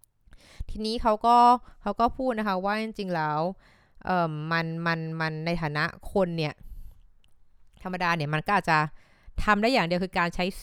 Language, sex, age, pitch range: Thai, female, 20-39, 160-200 Hz